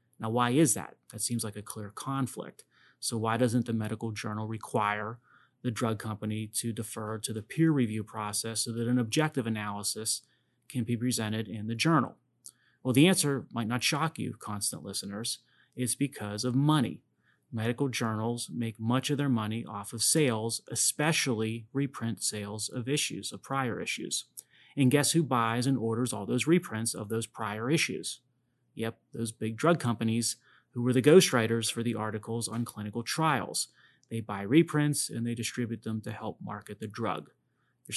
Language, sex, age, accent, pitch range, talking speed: English, male, 30-49, American, 110-125 Hz, 175 wpm